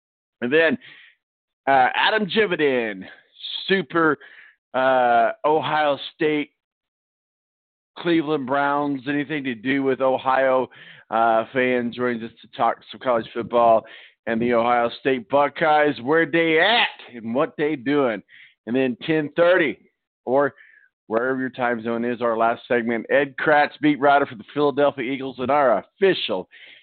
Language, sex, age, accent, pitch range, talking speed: English, male, 50-69, American, 120-155 Hz, 135 wpm